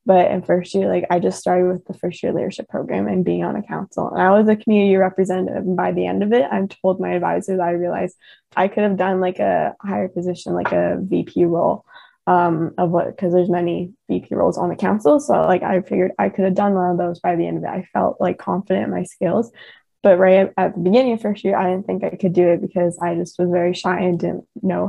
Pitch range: 175-200 Hz